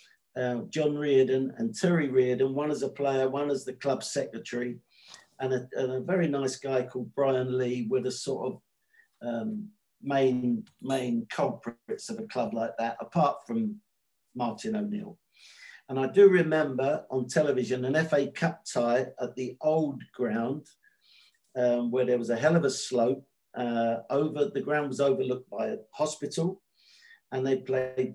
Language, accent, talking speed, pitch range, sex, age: English, British, 165 wpm, 125-165 Hz, male, 50-69